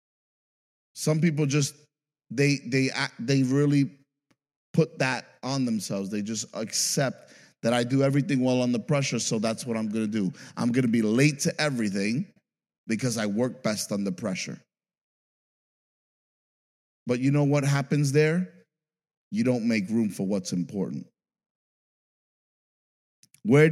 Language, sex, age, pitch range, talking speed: English, male, 30-49, 105-140 Hz, 140 wpm